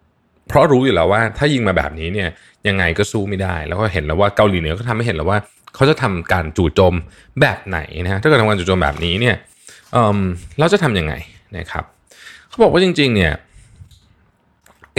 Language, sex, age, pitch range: Thai, male, 20-39, 85-120 Hz